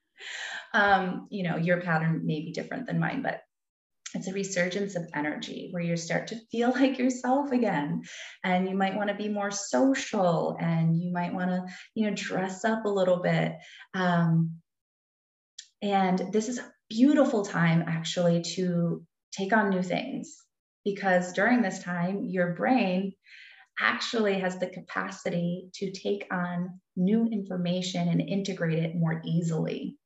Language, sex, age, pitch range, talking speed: English, female, 30-49, 175-220 Hz, 155 wpm